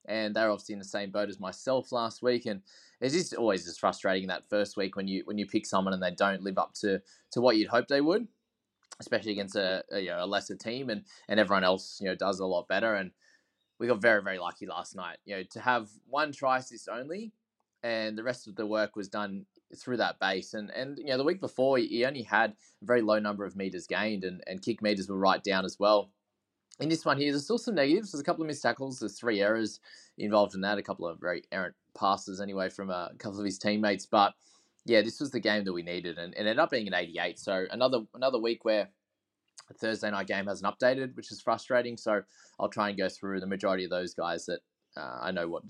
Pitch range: 95-120 Hz